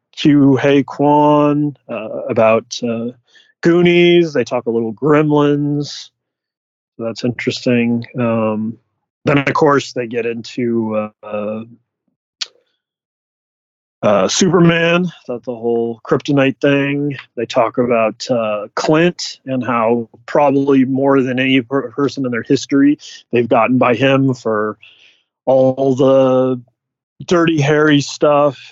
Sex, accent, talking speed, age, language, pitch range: male, American, 115 wpm, 30-49, English, 115-145 Hz